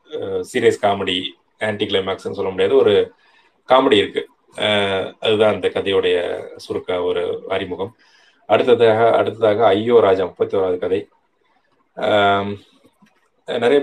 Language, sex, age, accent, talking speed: Tamil, male, 20-39, native, 100 wpm